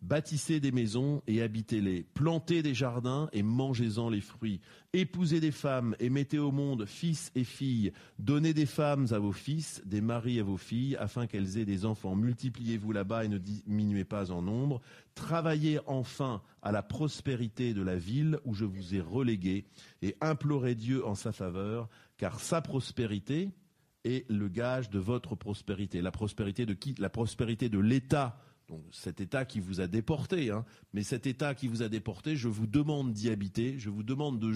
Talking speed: 185 wpm